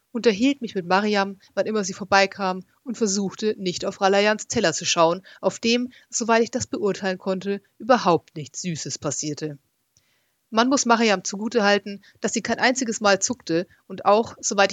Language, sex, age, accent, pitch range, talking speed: German, female, 30-49, German, 175-225 Hz, 165 wpm